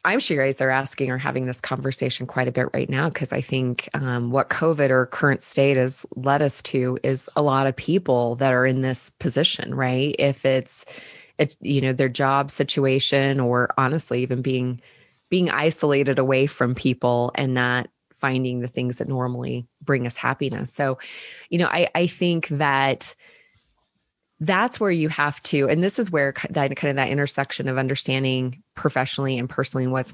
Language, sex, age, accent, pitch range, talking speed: English, female, 20-39, American, 130-150 Hz, 185 wpm